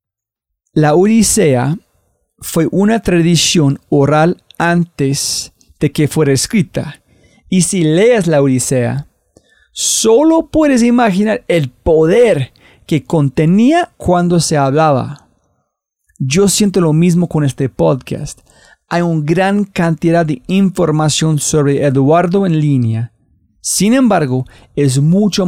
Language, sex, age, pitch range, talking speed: Spanish, male, 40-59, 130-170 Hz, 110 wpm